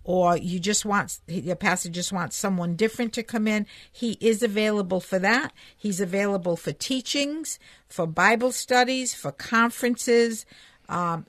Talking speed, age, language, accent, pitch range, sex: 150 wpm, 50-69, English, American, 175-225 Hz, female